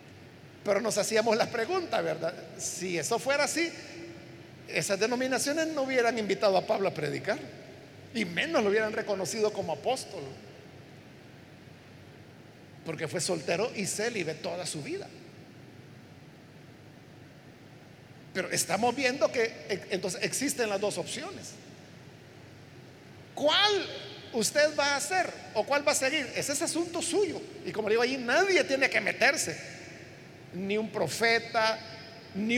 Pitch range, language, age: 170-265 Hz, Spanish, 50-69